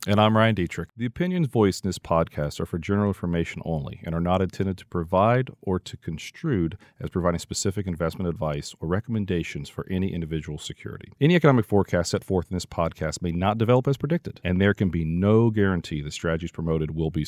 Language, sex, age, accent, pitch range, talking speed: English, male, 40-59, American, 90-120 Hz, 205 wpm